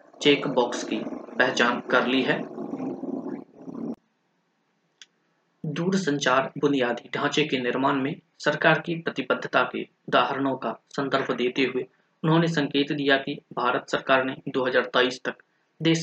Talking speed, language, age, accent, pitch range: 110 wpm, Hindi, 20-39, native, 130-165 Hz